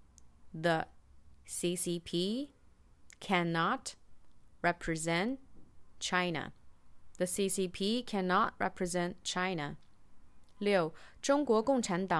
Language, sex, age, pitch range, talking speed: English, female, 30-49, 160-195 Hz, 50 wpm